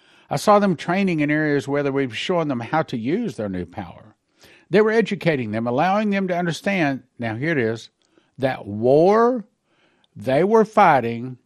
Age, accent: 50-69, American